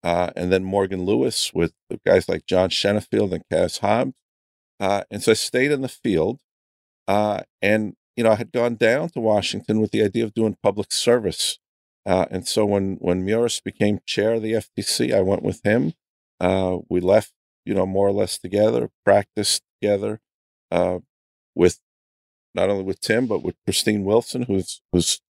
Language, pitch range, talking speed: English, 90-110 Hz, 180 wpm